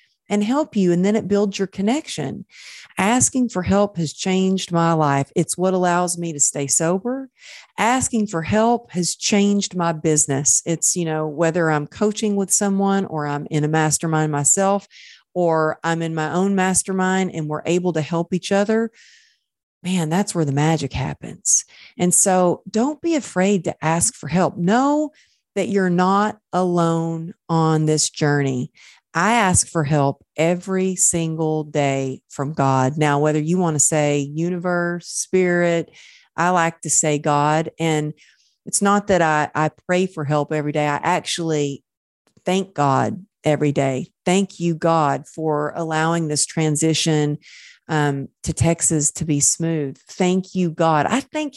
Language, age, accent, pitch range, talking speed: English, 40-59, American, 155-195 Hz, 160 wpm